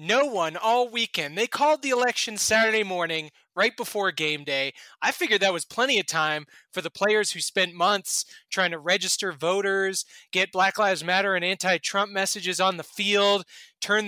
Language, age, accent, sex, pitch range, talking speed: English, 30-49, American, male, 180-235 Hz, 180 wpm